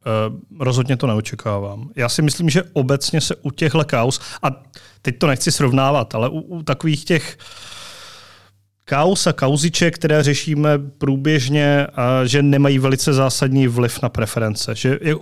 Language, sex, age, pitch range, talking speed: Czech, male, 30-49, 125-145 Hz, 140 wpm